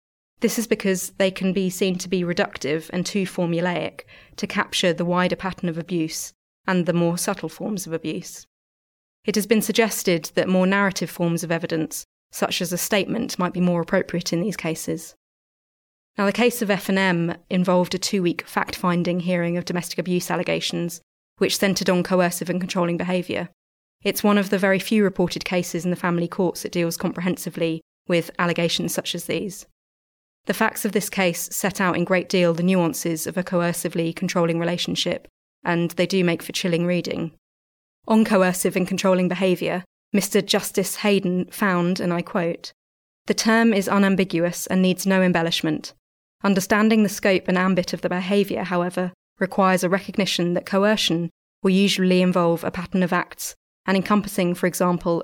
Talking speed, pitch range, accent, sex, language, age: 170 wpm, 175-195 Hz, British, female, English, 30-49